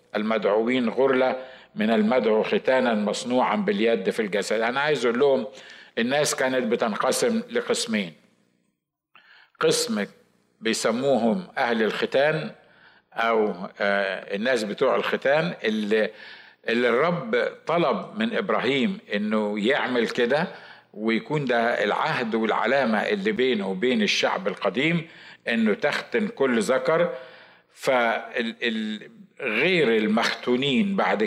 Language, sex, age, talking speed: Arabic, male, 50-69, 95 wpm